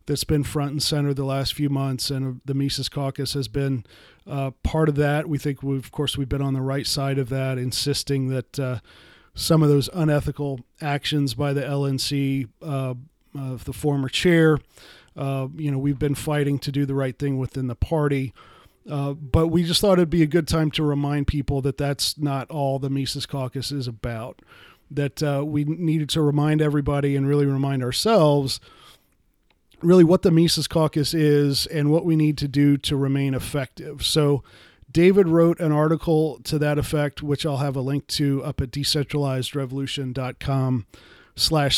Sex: male